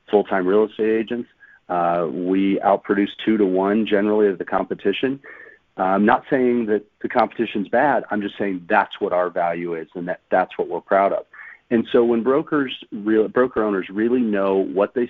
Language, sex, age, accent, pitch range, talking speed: English, male, 40-59, American, 95-115 Hz, 190 wpm